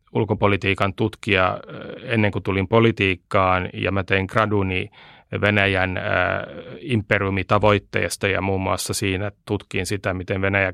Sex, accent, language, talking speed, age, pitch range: male, native, Finnish, 125 wpm, 30-49, 95-110 Hz